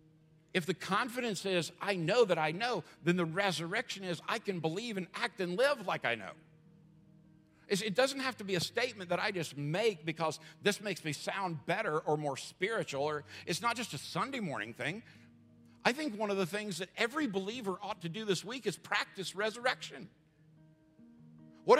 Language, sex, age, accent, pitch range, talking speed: English, male, 60-79, American, 155-235 Hz, 190 wpm